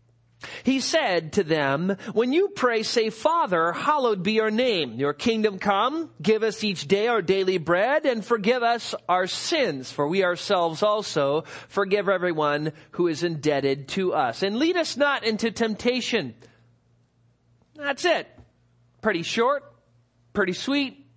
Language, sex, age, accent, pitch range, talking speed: English, male, 40-59, American, 145-235 Hz, 145 wpm